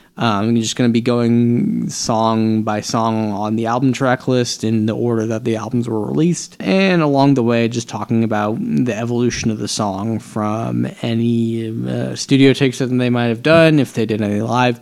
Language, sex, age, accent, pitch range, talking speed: English, male, 20-39, American, 110-140 Hz, 205 wpm